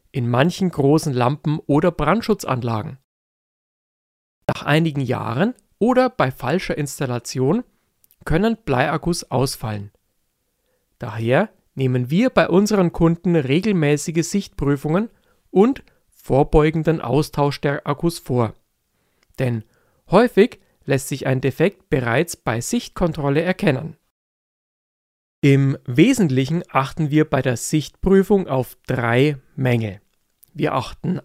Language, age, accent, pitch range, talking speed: German, 40-59, German, 135-180 Hz, 100 wpm